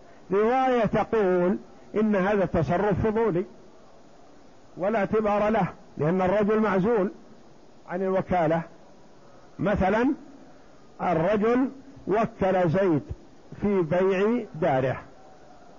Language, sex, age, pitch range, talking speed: Arabic, male, 50-69, 170-210 Hz, 80 wpm